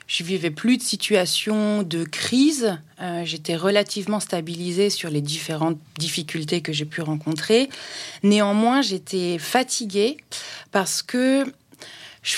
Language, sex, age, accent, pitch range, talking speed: French, female, 30-49, French, 185-240 Hz, 125 wpm